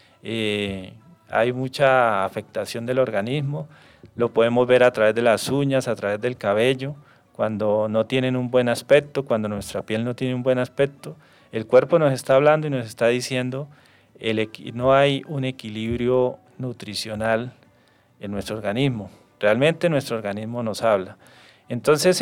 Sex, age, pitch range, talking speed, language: male, 40-59, 110-140 Hz, 150 wpm, Spanish